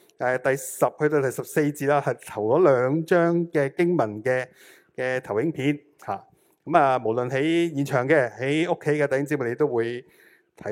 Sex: male